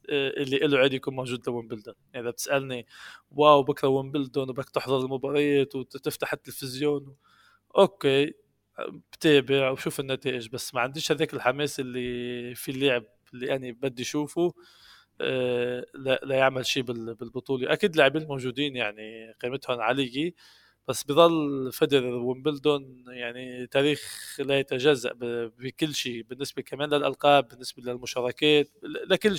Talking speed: 125 wpm